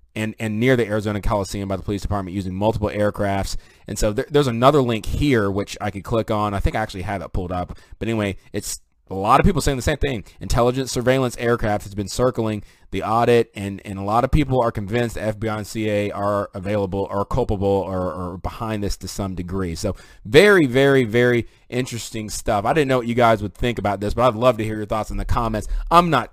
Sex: male